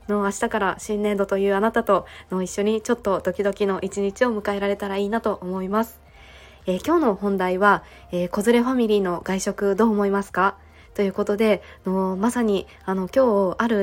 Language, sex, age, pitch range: Japanese, female, 20-39, 190-220 Hz